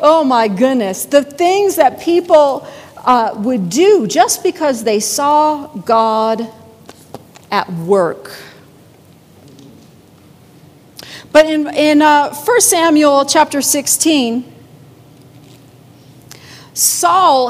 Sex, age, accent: female, 40-59, American